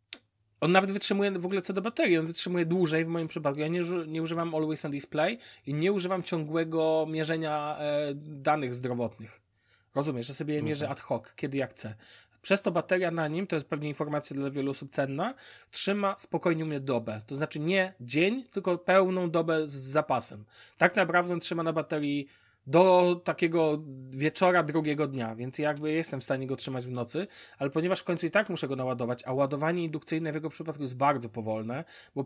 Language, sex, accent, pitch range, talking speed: Polish, male, native, 135-170 Hz, 195 wpm